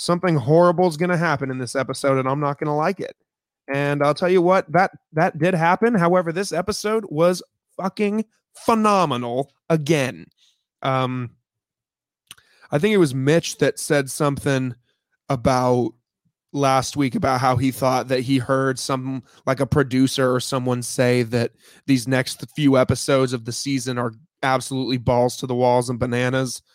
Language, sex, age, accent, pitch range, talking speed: English, male, 20-39, American, 130-155 Hz, 165 wpm